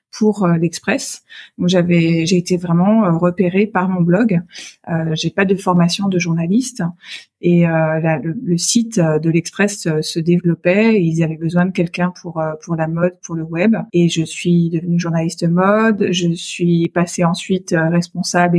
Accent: French